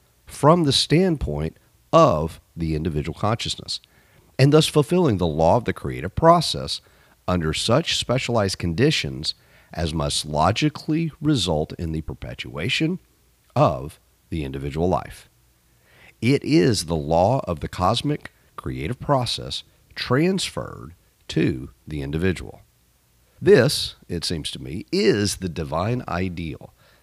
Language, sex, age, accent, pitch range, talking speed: English, male, 50-69, American, 80-135 Hz, 120 wpm